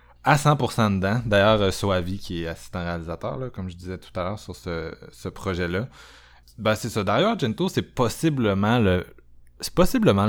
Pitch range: 90-115 Hz